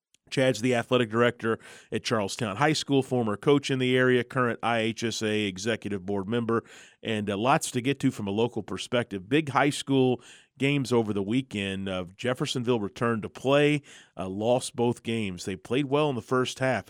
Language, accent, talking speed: English, American, 185 wpm